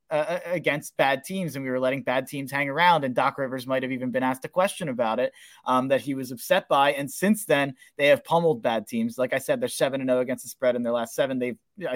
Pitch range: 130-160 Hz